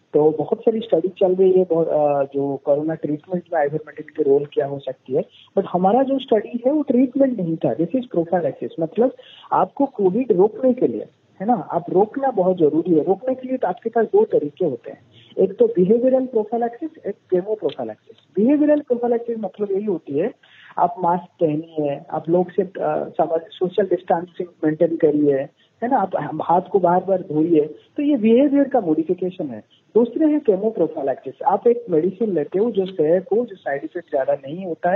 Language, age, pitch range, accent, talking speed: Hindi, 40-59, 165-240 Hz, native, 180 wpm